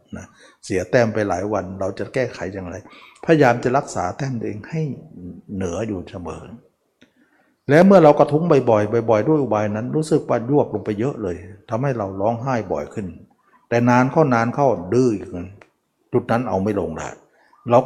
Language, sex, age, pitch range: Thai, male, 60-79, 105-135 Hz